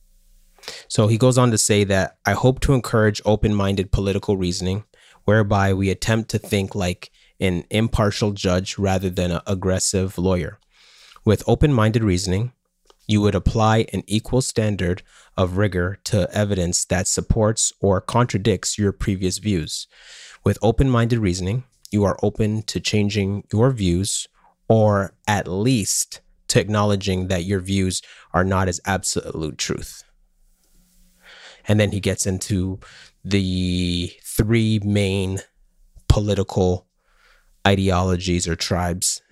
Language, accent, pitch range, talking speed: English, American, 95-110 Hz, 125 wpm